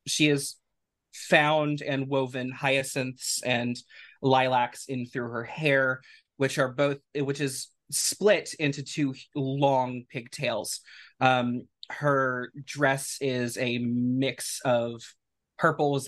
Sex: male